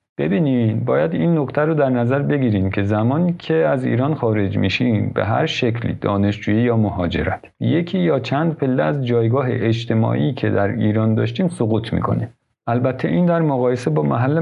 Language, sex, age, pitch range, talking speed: Persian, male, 50-69, 100-125 Hz, 165 wpm